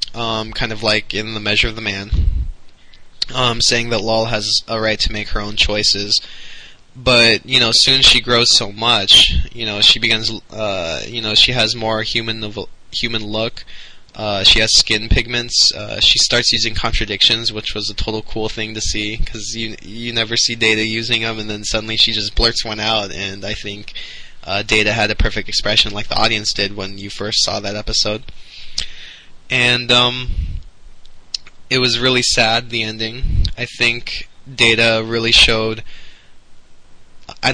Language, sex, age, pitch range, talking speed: English, male, 10-29, 105-115 Hz, 175 wpm